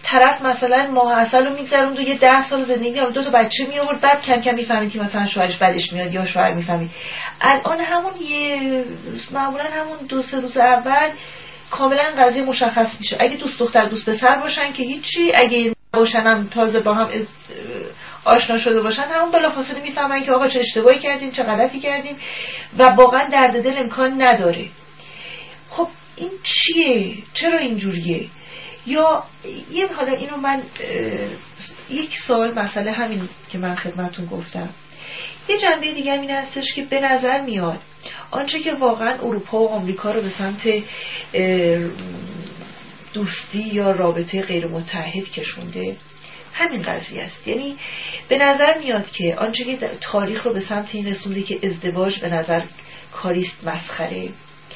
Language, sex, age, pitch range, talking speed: Persian, female, 40-59, 195-275 Hz, 150 wpm